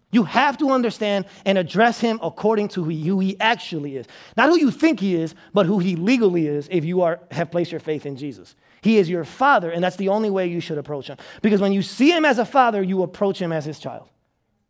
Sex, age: male, 30-49